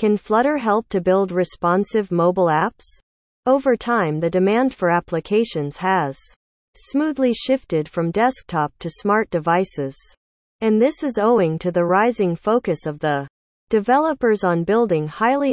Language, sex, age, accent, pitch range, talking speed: English, female, 40-59, American, 165-230 Hz, 140 wpm